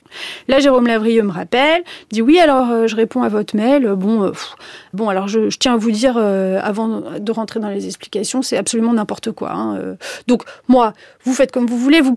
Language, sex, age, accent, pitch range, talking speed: French, female, 30-49, French, 200-260 Hz, 220 wpm